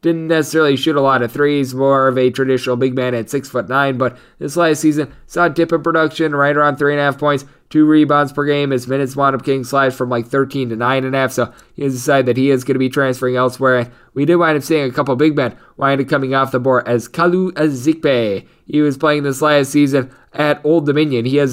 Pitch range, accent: 135-150 Hz, American